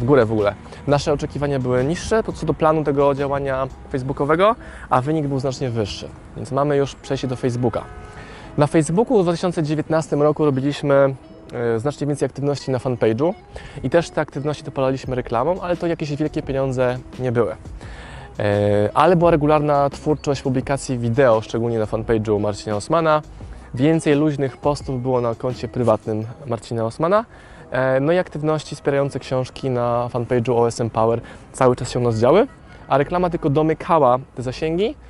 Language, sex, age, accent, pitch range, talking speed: Polish, male, 20-39, native, 120-150 Hz, 160 wpm